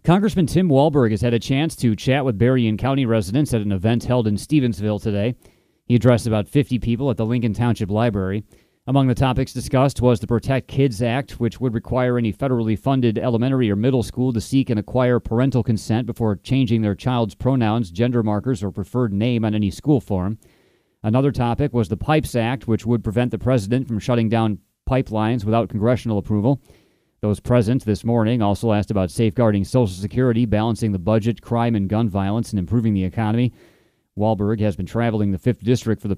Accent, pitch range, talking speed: American, 105-125 Hz, 195 wpm